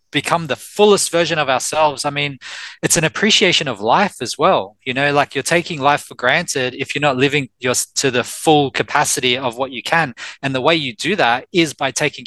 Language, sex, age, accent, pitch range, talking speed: English, male, 20-39, Australian, 130-155 Hz, 215 wpm